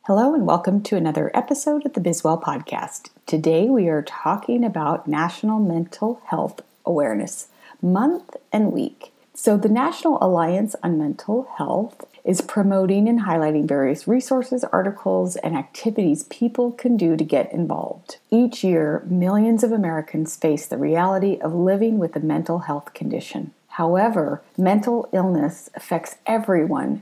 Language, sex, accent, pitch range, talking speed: English, female, American, 170-215 Hz, 140 wpm